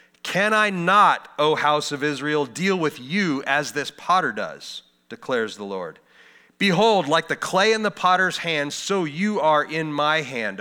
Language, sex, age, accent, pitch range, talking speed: English, male, 30-49, American, 130-180 Hz, 175 wpm